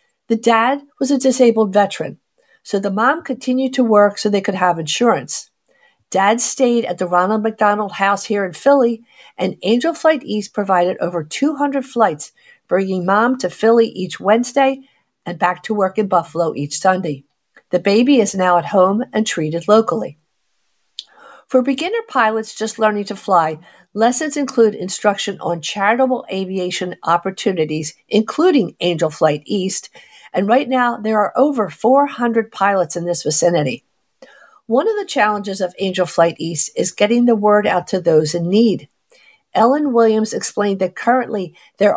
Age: 50-69